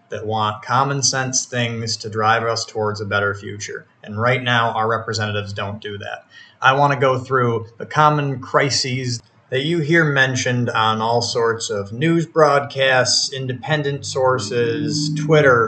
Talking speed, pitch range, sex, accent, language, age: 155 wpm, 110-140 Hz, male, American, English, 30-49